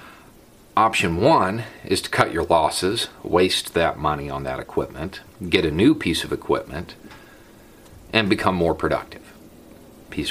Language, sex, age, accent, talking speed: English, male, 40-59, American, 140 wpm